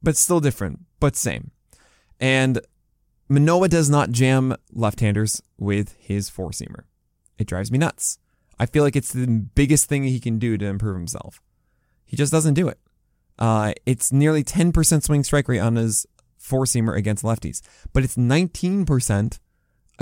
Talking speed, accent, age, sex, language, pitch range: 155 wpm, American, 20-39, male, English, 110-145 Hz